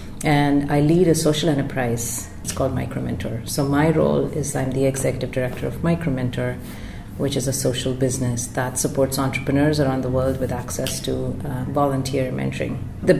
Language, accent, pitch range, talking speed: English, Indian, 125-150 Hz, 170 wpm